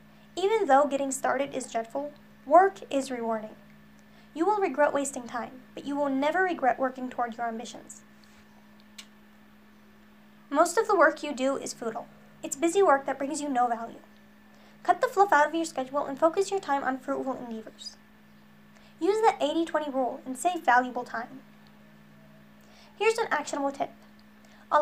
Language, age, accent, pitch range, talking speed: English, 10-29, American, 245-325 Hz, 160 wpm